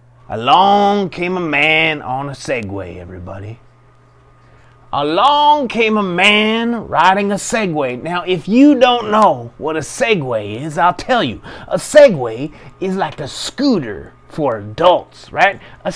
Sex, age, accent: male, 30-49, American